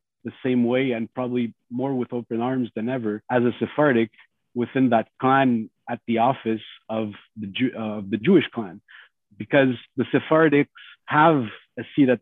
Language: English